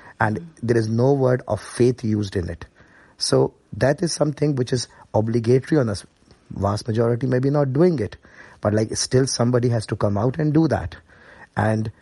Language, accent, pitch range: English, Indian, 105-120 Hz